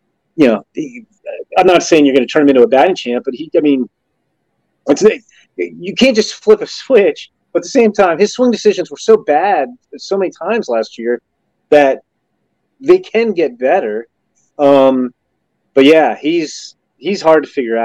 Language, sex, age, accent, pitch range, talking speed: English, male, 30-49, American, 125-195 Hz, 180 wpm